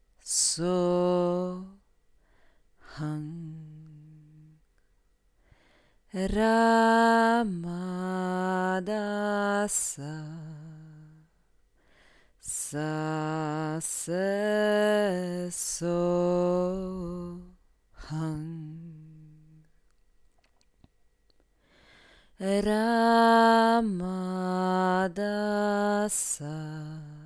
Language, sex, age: Polish, female, 30-49